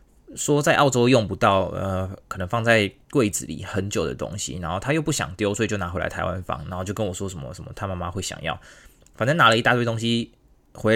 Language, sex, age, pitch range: Chinese, male, 20-39, 90-130 Hz